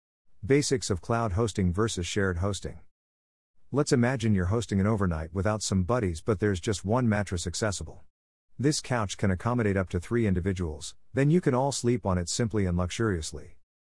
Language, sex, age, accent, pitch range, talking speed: English, male, 50-69, American, 85-115 Hz, 170 wpm